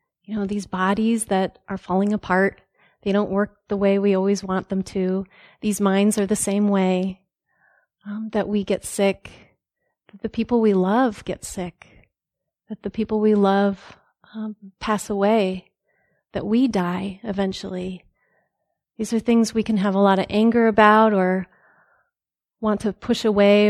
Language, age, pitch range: English, 30-49, 195-225 Hz